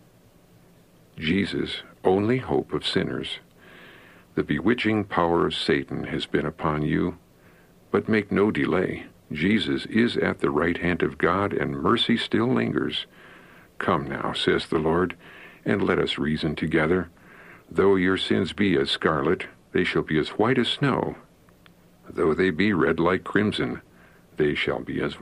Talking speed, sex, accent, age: 150 wpm, male, American, 60-79